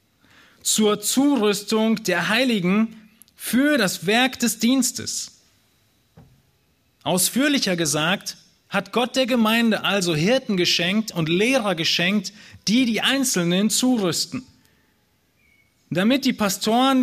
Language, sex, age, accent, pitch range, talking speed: German, male, 30-49, German, 160-220 Hz, 100 wpm